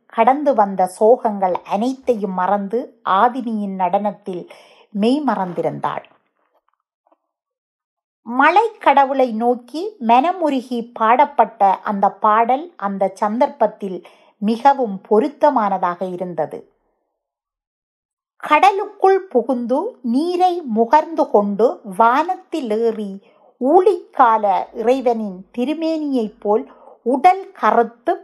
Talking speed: 70 wpm